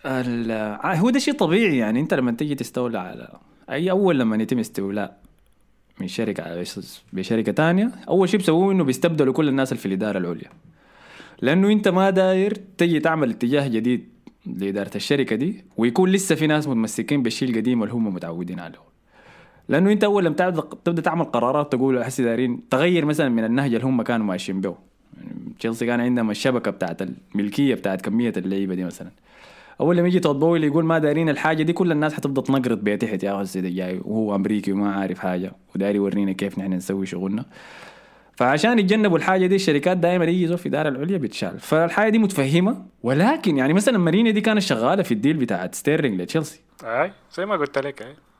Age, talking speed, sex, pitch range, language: 20-39, 185 wpm, male, 110-175 Hz, Arabic